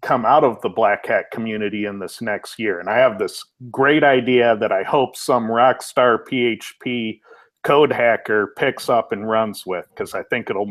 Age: 40-59